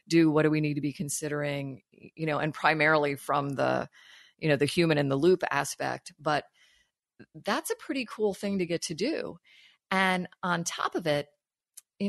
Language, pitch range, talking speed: English, 145-180 Hz, 190 wpm